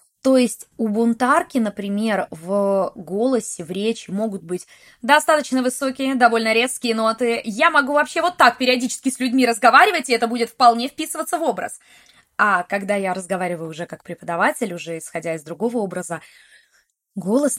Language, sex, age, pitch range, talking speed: Russian, female, 20-39, 190-265 Hz, 155 wpm